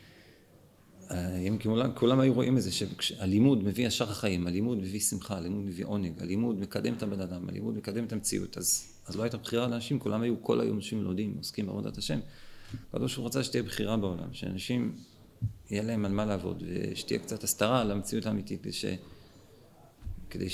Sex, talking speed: male, 180 wpm